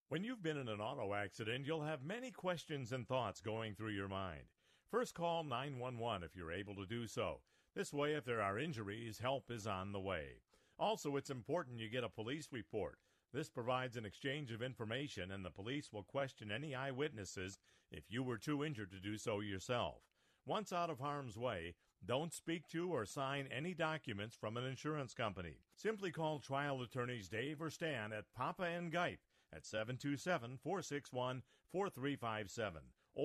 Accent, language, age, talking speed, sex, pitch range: American, English, 50-69, 175 wpm, male, 105-150 Hz